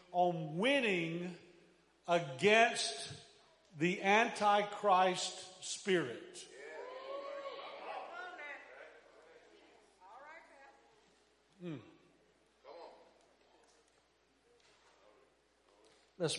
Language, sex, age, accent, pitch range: English, male, 50-69, American, 170-210 Hz